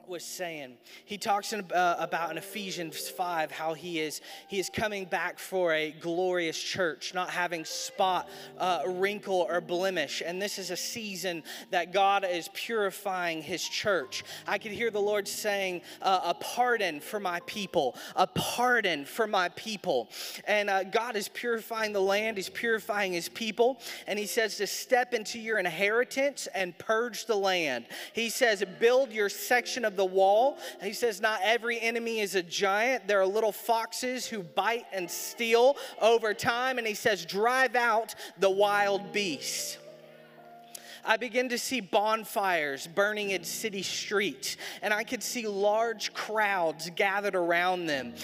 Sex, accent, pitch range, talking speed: male, American, 190-235 Hz, 165 wpm